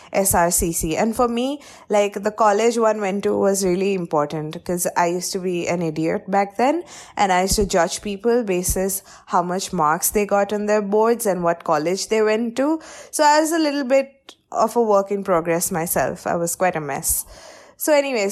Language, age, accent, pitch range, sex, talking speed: English, 20-39, Indian, 185-245 Hz, female, 205 wpm